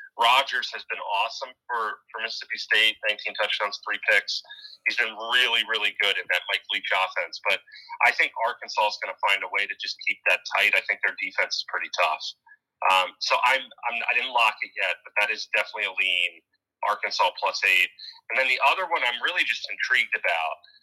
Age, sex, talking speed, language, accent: 30-49, male, 205 wpm, English, American